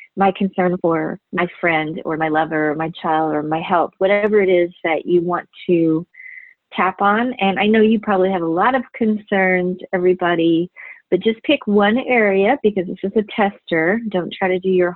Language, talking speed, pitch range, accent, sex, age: English, 195 wpm, 175-210 Hz, American, female, 30-49